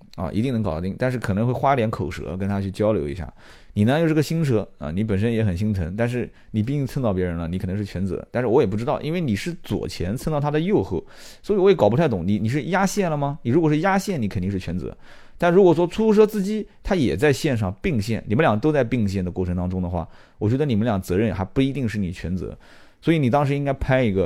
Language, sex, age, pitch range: Chinese, male, 30-49, 95-135 Hz